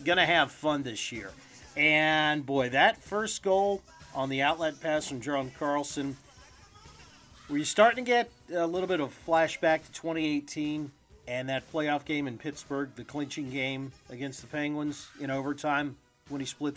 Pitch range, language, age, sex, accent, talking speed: 130-160 Hz, English, 40-59, male, American, 160 wpm